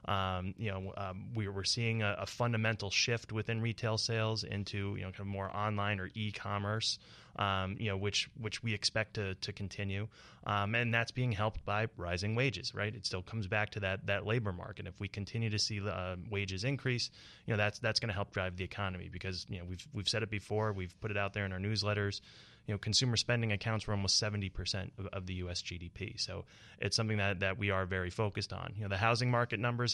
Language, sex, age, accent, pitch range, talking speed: English, male, 20-39, American, 100-110 Hz, 230 wpm